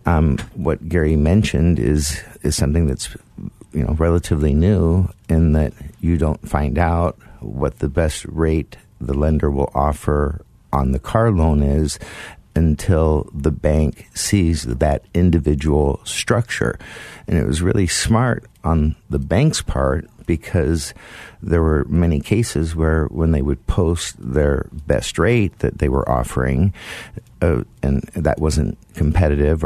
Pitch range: 70-85 Hz